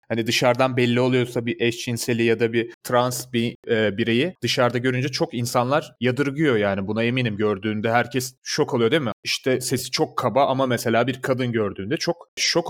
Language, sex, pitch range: Turkish, male, 115-145 Hz